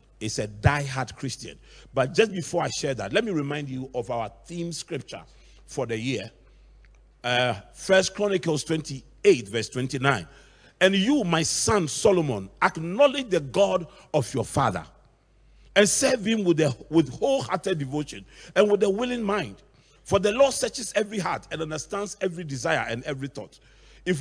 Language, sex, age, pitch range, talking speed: English, male, 40-59, 130-185 Hz, 160 wpm